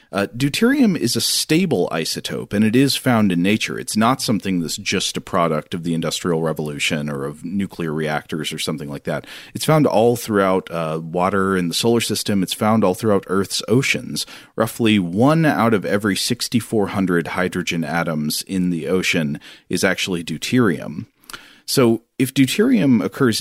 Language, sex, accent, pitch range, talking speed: English, male, American, 85-105 Hz, 165 wpm